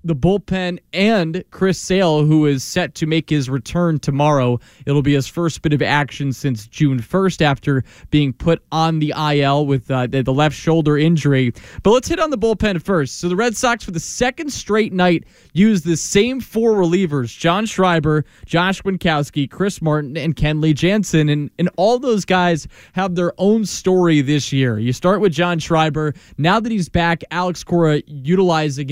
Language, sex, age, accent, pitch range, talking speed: English, male, 20-39, American, 140-180 Hz, 185 wpm